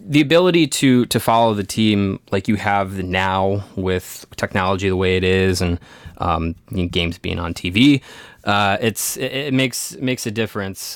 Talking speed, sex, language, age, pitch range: 165 wpm, male, English, 20-39, 100-120 Hz